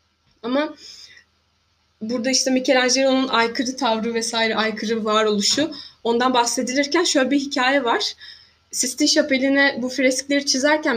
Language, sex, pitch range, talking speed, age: Turkish, female, 225-275 Hz, 110 wpm, 20-39